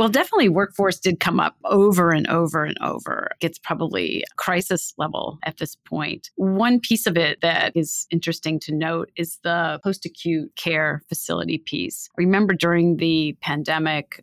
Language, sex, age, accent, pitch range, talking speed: English, female, 30-49, American, 155-180 Hz, 155 wpm